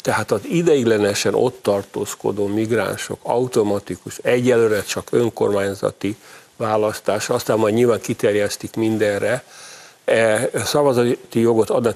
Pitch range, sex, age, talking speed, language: 105-140 Hz, male, 50-69, 95 wpm, Hungarian